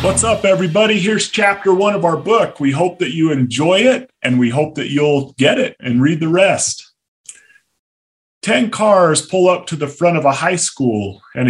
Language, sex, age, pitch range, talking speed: English, male, 30-49, 140-185 Hz, 200 wpm